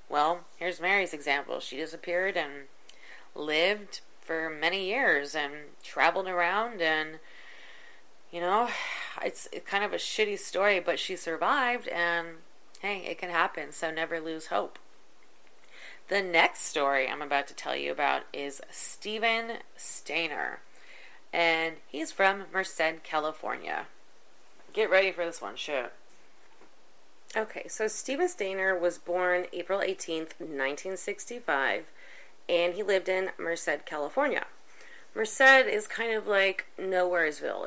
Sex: female